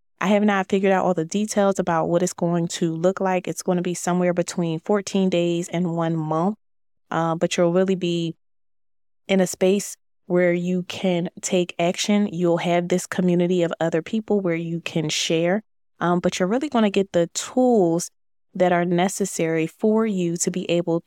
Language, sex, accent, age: English, female, American, 20-39